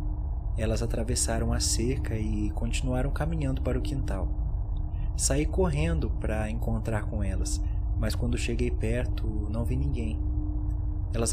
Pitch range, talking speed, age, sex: 75-100 Hz, 125 wpm, 20-39, male